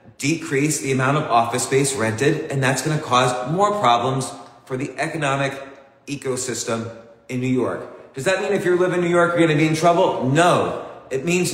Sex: male